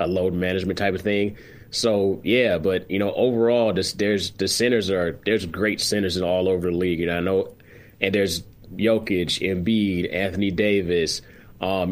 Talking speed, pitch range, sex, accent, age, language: 165 wpm, 90-105 Hz, male, American, 20-39, English